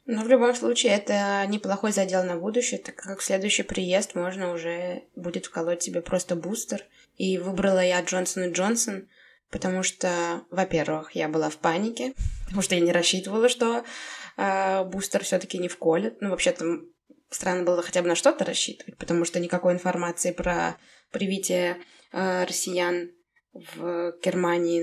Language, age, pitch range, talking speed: Russian, 20-39, 170-215 Hz, 155 wpm